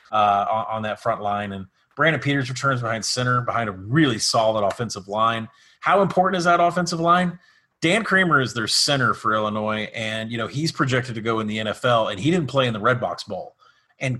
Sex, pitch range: male, 110-140 Hz